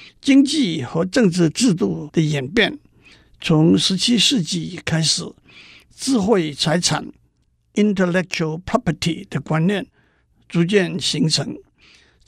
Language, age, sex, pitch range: Chinese, 60-79, male, 155-210 Hz